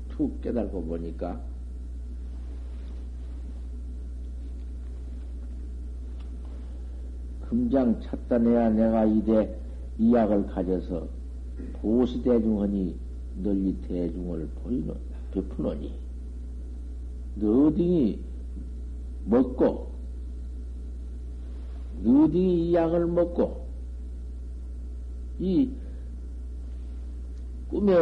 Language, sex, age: Korean, male, 60-79